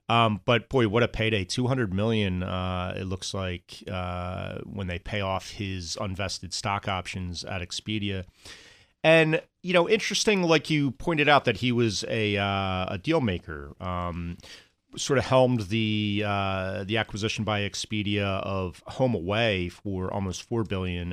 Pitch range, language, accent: 95-115 Hz, English, American